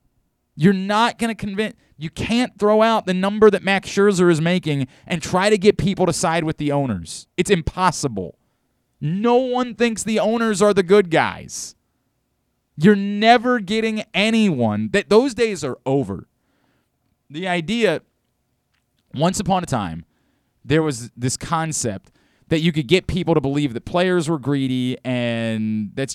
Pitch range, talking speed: 145-215 Hz, 155 wpm